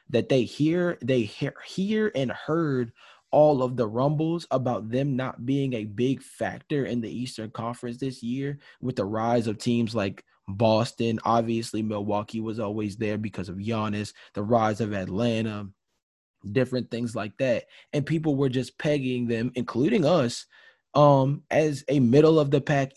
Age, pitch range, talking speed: 20-39, 105-130 Hz, 155 wpm